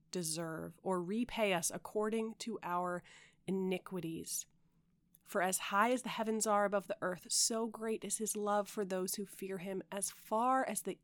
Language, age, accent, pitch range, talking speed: English, 30-49, American, 170-215 Hz, 175 wpm